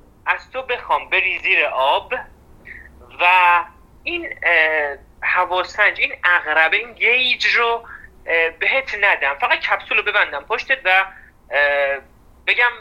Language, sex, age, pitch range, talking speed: Persian, male, 40-59, 145-240 Hz, 110 wpm